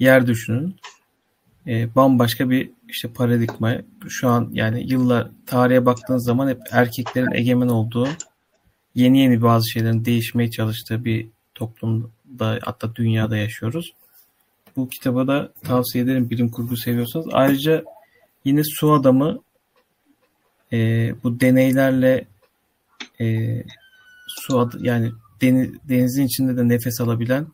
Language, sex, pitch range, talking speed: Turkish, male, 115-130 Hz, 120 wpm